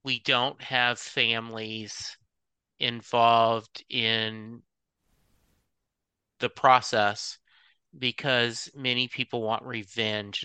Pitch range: 110-125 Hz